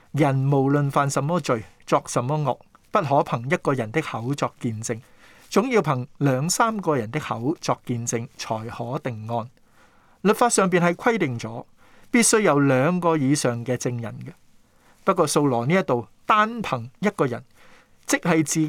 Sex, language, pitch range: male, Chinese, 125-180 Hz